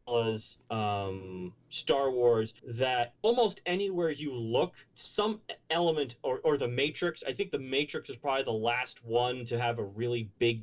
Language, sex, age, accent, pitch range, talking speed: English, male, 30-49, American, 115-145 Hz, 160 wpm